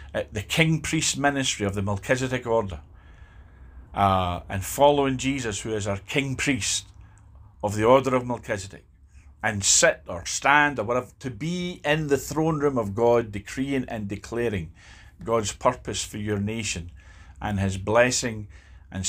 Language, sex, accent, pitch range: English, male, British, 95-130 Hz